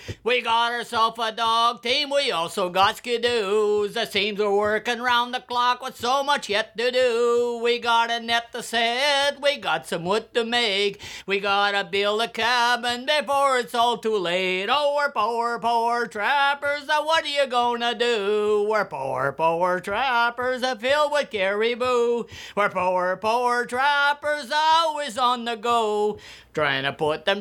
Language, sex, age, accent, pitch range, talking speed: English, male, 50-69, American, 210-255 Hz, 160 wpm